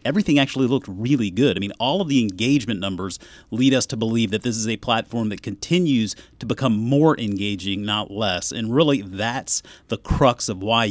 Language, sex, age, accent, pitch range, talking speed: English, male, 30-49, American, 105-135 Hz, 200 wpm